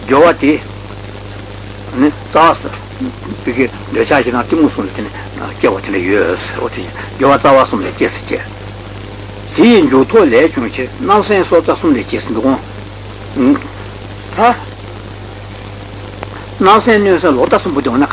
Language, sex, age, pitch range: Italian, male, 60-79, 100-130 Hz